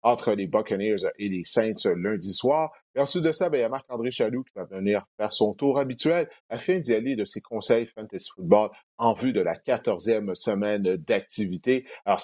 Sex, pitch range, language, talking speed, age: male, 115-145 Hz, French, 200 wpm, 30-49